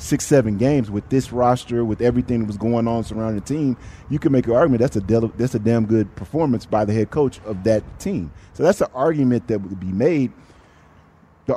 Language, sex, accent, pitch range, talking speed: English, male, American, 100-130 Hz, 230 wpm